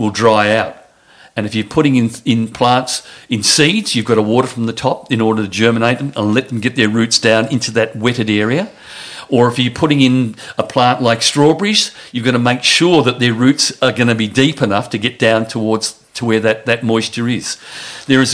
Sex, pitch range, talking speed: male, 110-135 Hz, 230 wpm